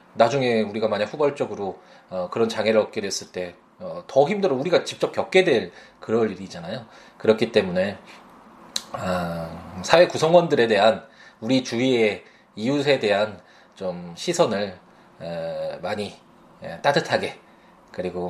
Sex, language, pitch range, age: male, Korean, 95-145 Hz, 20-39